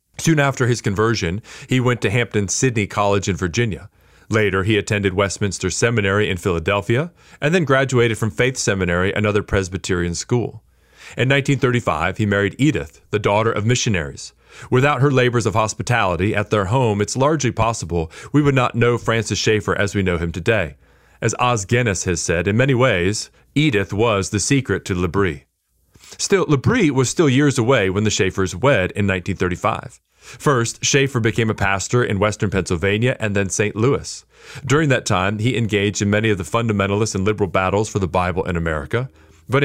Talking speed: 175 wpm